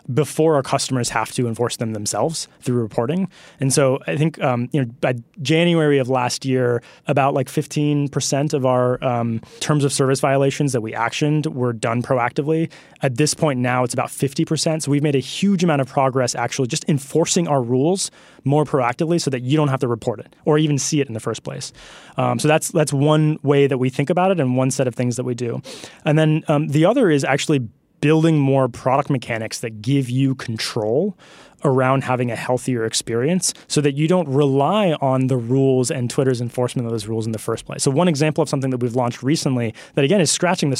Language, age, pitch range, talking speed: English, 20-39, 125-150 Hz, 215 wpm